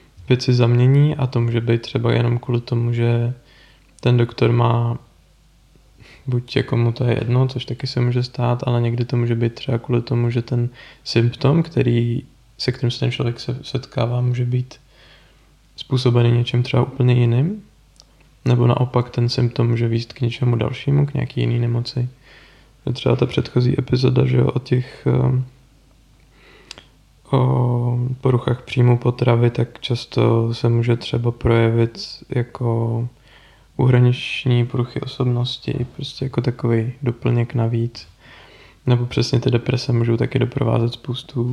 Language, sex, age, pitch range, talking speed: Czech, male, 20-39, 120-130 Hz, 145 wpm